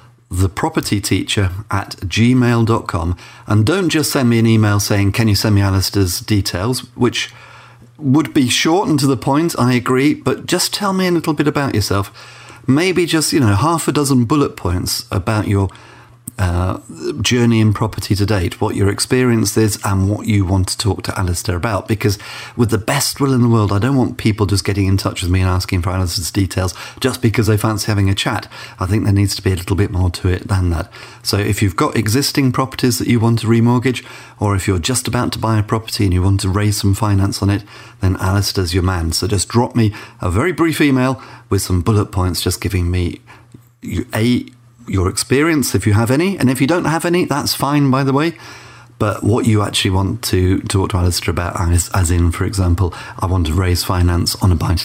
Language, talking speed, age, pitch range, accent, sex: English, 220 wpm, 40-59, 95-125 Hz, British, male